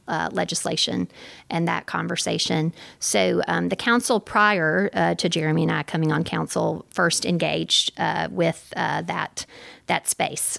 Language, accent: English, American